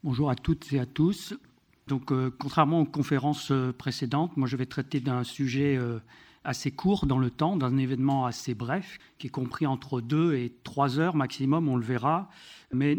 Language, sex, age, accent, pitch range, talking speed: French, male, 50-69, French, 130-160 Hz, 190 wpm